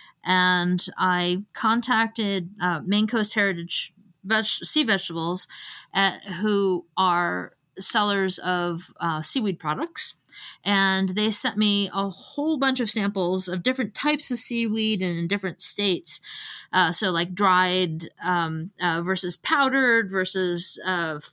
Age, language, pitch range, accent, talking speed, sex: 20-39, English, 180-220 Hz, American, 130 wpm, female